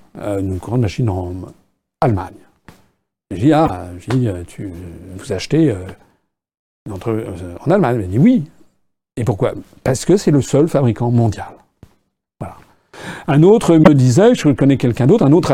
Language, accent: French, French